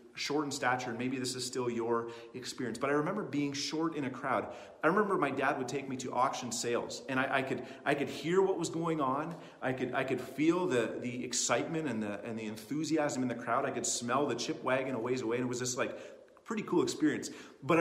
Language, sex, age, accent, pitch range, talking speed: English, male, 30-49, American, 125-165 Hz, 245 wpm